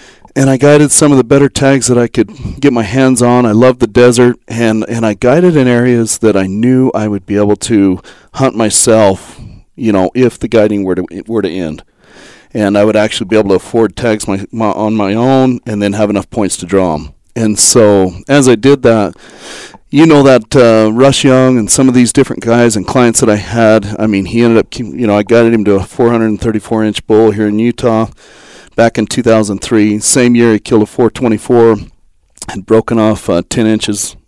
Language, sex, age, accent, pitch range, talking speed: English, male, 40-59, American, 105-125 Hz, 220 wpm